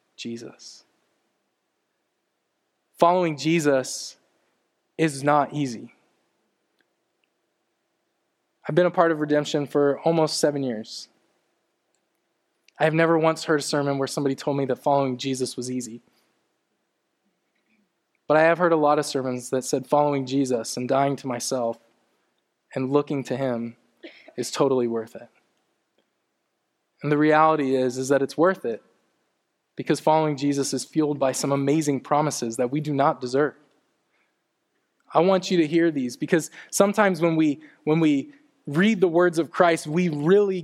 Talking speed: 140 wpm